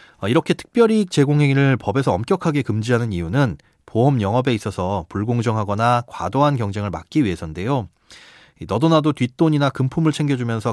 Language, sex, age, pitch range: Korean, male, 30-49, 110-150 Hz